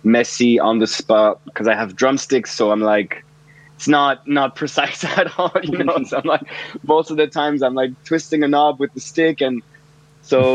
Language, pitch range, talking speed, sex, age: English, 105-135 Hz, 190 wpm, male, 20-39